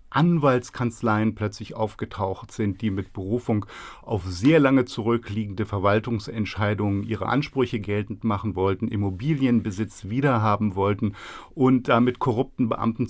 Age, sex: 50-69, male